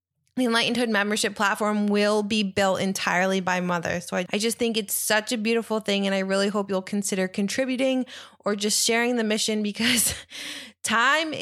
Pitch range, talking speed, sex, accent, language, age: 190-220 Hz, 185 wpm, female, American, English, 20-39